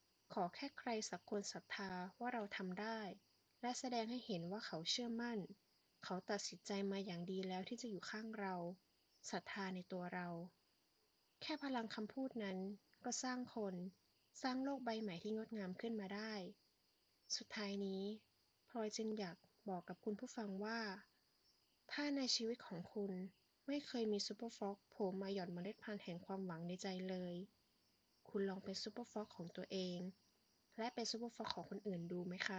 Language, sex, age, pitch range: Thai, female, 20-39, 185-220 Hz